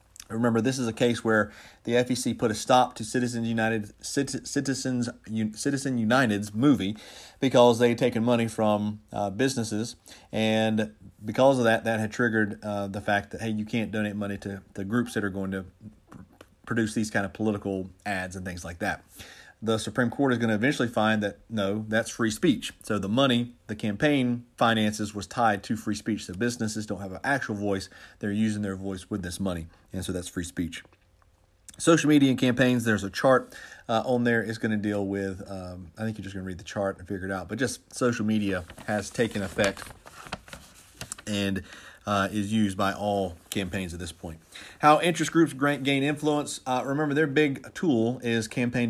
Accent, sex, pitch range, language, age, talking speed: American, male, 100-120 Hz, English, 30-49, 195 wpm